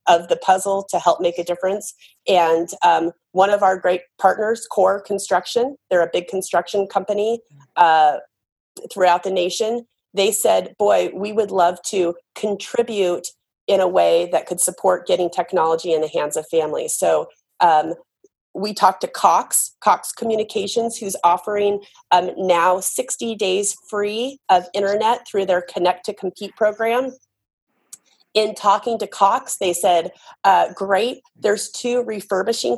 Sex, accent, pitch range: female, American, 180-225 Hz